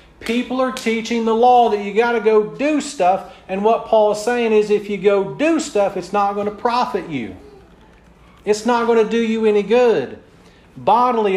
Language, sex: English, male